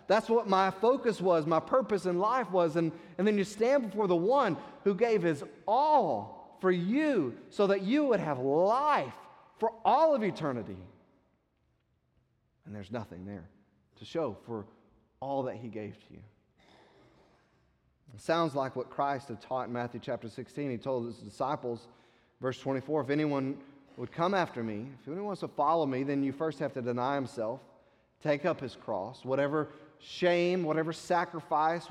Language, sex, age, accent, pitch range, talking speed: English, male, 30-49, American, 125-180 Hz, 170 wpm